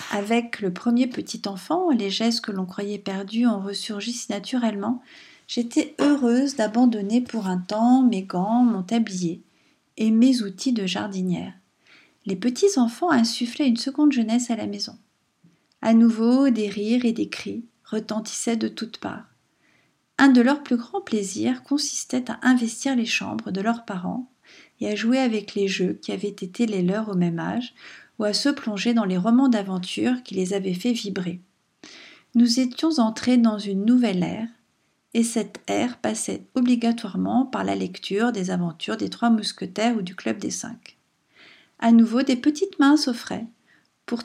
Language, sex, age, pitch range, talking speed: French, female, 40-59, 200-245 Hz, 165 wpm